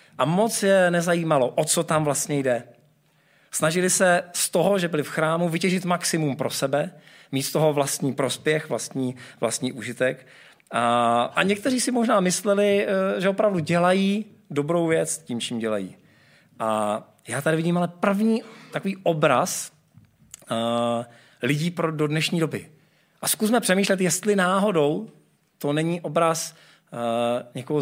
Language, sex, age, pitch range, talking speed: Czech, male, 40-59, 135-180 Hz, 140 wpm